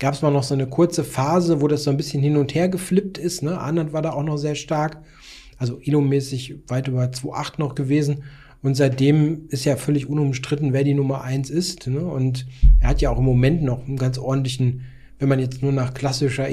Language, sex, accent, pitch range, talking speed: German, male, German, 130-150 Hz, 225 wpm